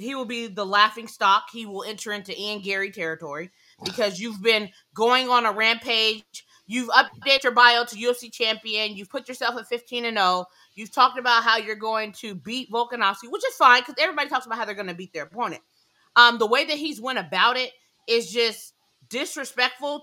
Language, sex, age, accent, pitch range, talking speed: English, female, 20-39, American, 215-275 Hz, 205 wpm